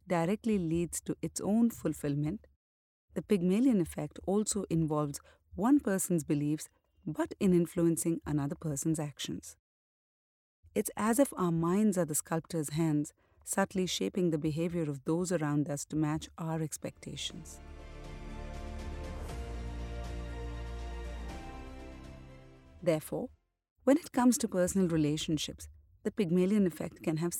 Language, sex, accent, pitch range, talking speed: English, female, Indian, 135-195 Hz, 115 wpm